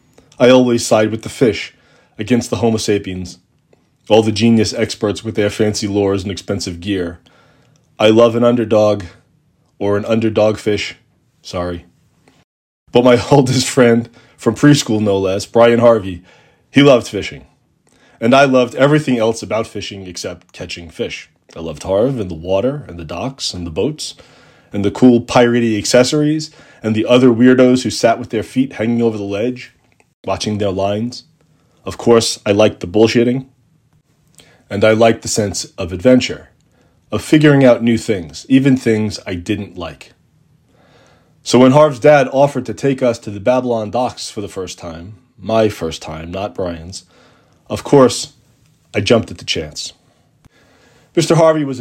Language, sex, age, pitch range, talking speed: English, male, 30-49, 100-125 Hz, 160 wpm